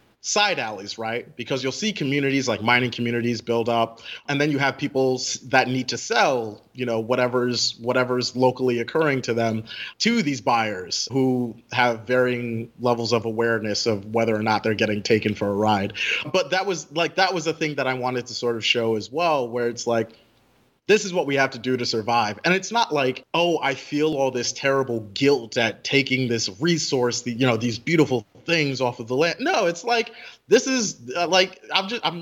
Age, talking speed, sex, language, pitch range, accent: 30-49, 210 wpm, male, English, 115-145 Hz, American